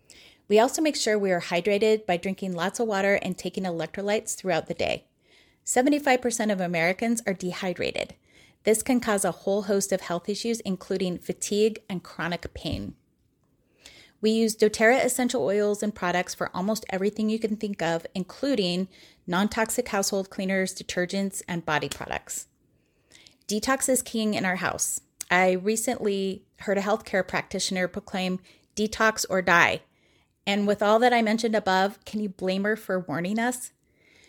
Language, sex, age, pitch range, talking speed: English, female, 30-49, 185-220 Hz, 155 wpm